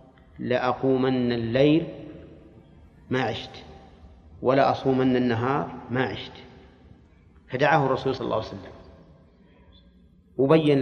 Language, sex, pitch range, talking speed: Arabic, male, 110-140 Hz, 90 wpm